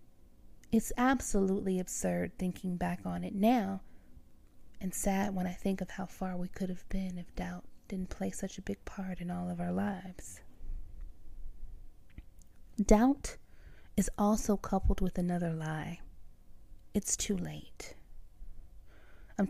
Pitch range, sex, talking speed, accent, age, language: 170-215 Hz, female, 135 wpm, American, 30-49, English